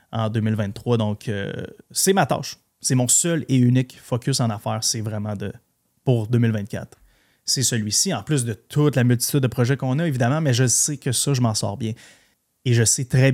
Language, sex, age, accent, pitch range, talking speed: French, male, 30-49, Canadian, 115-145 Hz, 205 wpm